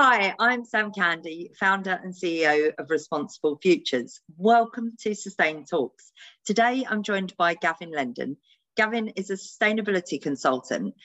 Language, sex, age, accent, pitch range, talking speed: English, female, 40-59, British, 170-220 Hz, 135 wpm